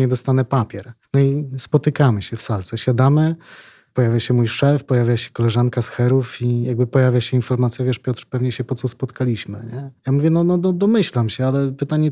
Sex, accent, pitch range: male, native, 120-145 Hz